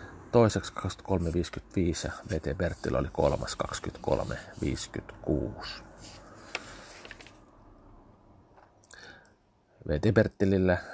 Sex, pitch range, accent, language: male, 80-100 Hz, native, Finnish